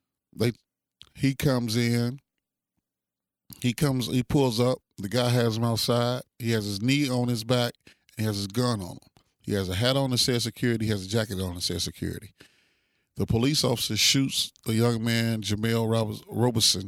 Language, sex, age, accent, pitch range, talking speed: English, male, 30-49, American, 105-120 Hz, 190 wpm